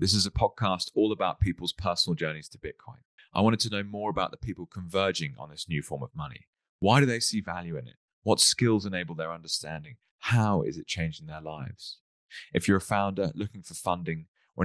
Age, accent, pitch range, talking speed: 20-39, British, 85-105 Hz, 215 wpm